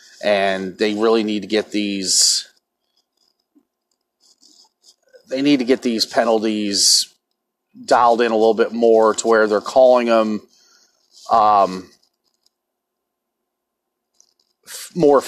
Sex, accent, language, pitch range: male, American, English, 105-120 Hz